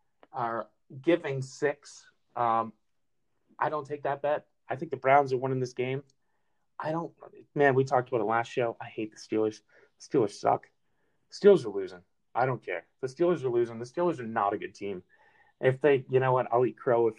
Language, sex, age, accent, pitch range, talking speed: English, male, 30-49, American, 125-150 Hz, 205 wpm